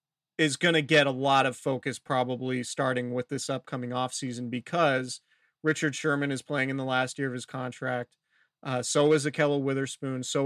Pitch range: 130-145 Hz